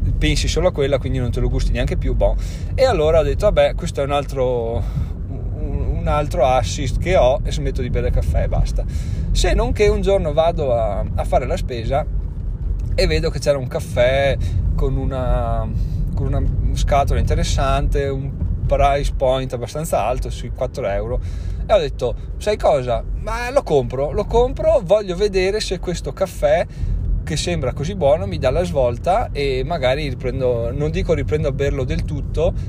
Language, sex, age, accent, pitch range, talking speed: Italian, male, 20-39, native, 95-130 Hz, 185 wpm